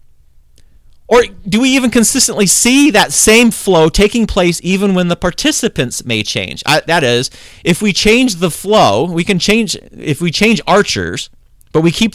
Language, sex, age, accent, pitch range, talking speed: English, male, 30-49, American, 135-210 Hz, 175 wpm